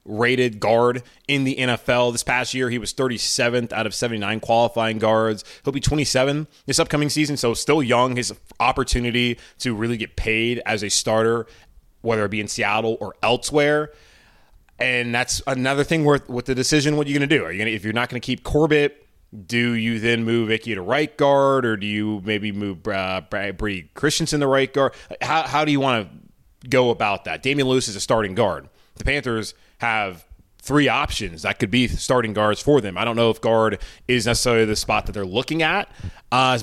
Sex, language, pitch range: male, English, 110-140 Hz